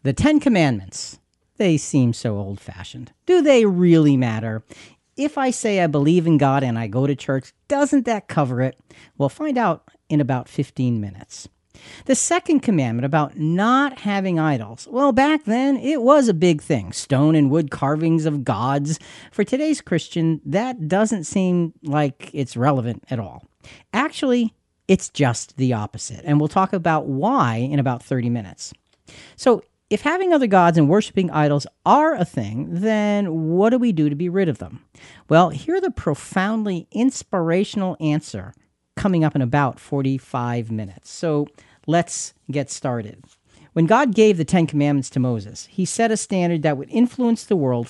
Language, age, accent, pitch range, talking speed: English, 40-59, American, 130-200 Hz, 170 wpm